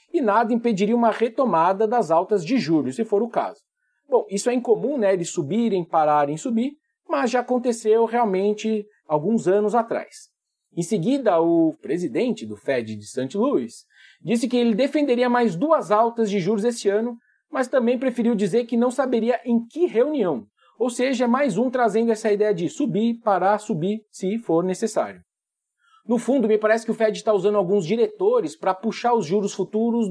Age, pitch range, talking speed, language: 40-59, 200-250 Hz, 180 wpm, Portuguese